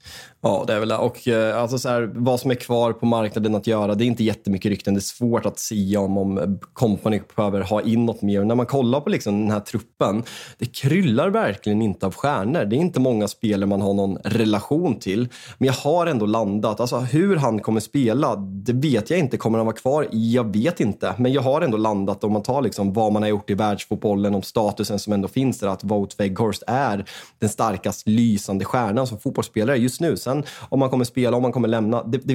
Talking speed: 235 wpm